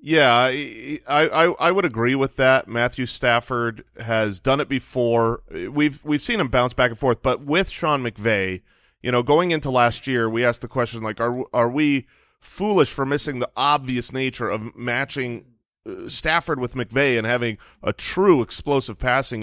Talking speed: 175 wpm